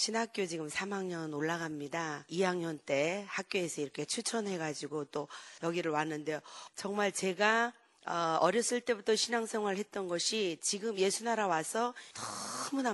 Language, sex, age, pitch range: Korean, female, 40-59, 165-220 Hz